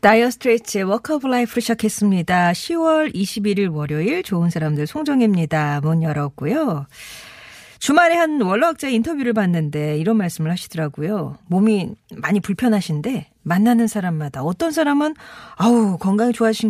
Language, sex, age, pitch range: Korean, female, 40-59, 165-230 Hz